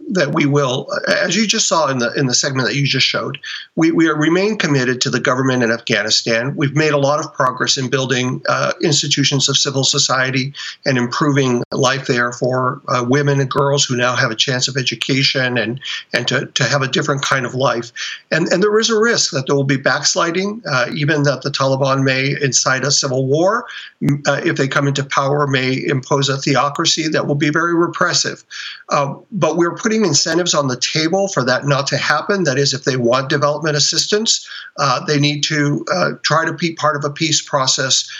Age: 50-69